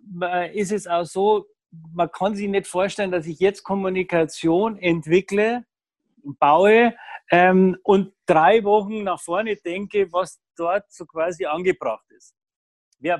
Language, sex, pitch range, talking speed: German, male, 175-210 Hz, 130 wpm